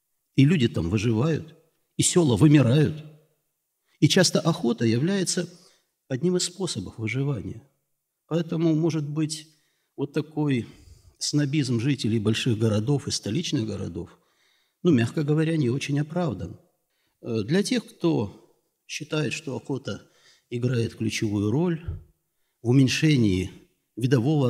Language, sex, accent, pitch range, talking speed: Russian, male, native, 115-170 Hz, 110 wpm